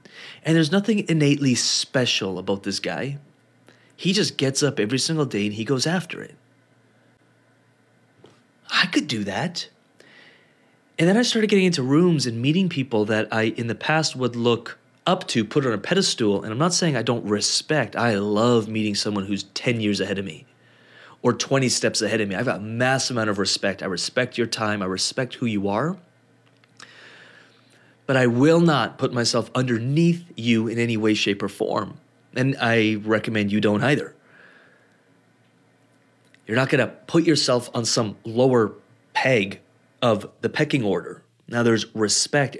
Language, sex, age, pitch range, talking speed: English, male, 30-49, 105-140 Hz, 175 wpm